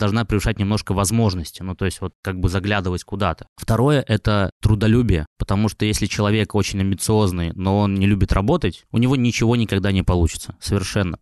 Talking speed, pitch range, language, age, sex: 180 wpm, 95-115 Hz, Russian, 20-39, male